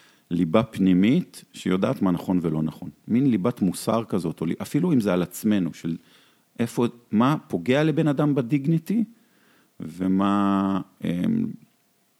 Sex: male